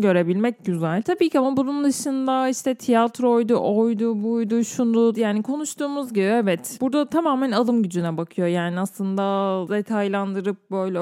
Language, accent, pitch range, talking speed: Turkish, native, 195-235 Hz, 135 wpm